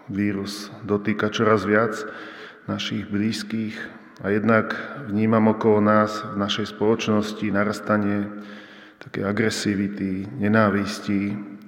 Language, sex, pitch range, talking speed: Slovak, male, 100-105 Hz, 90 wpm